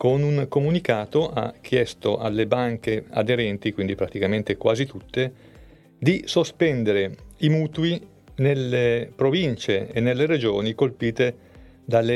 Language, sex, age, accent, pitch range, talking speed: Italian, male, 40-59, native, 110-130 Hz, 115 wpm